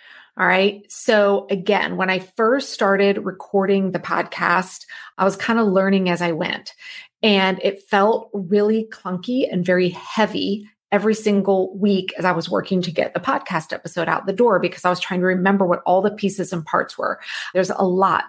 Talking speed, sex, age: 190 wpm, female, 30-49